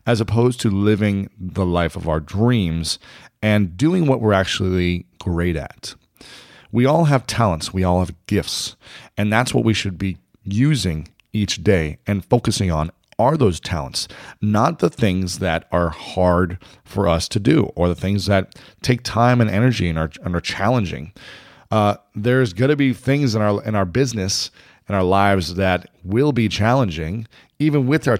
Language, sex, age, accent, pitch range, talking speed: English, male, 40-59, American, 90-115 Hz, 170 wpm